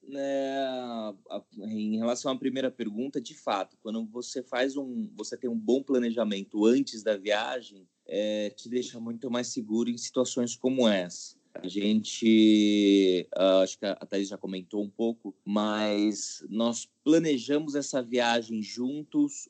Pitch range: 110-150 Hz